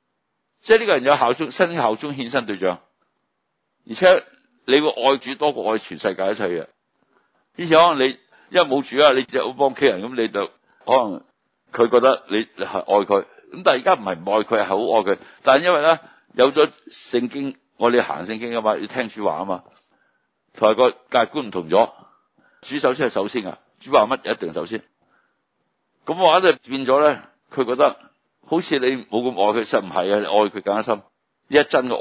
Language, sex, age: Chinese, male, 60-79